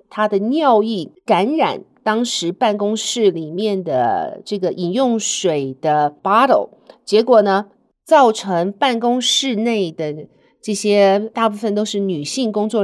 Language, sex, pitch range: Chinese, female, 180-235 Hz